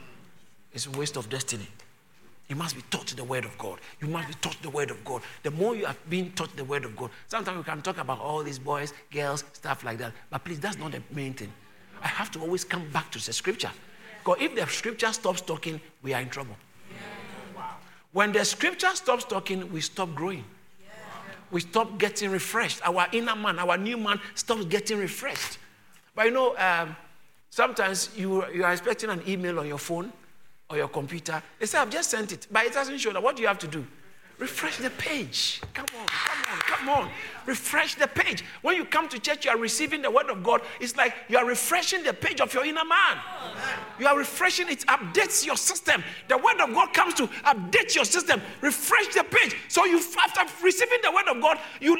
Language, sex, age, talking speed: English, male, 50-69, 215 wpm